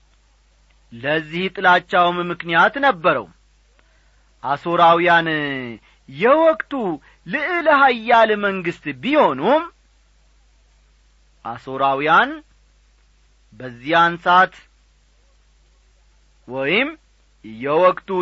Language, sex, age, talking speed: Amharic, male, 40-59, 45 wpm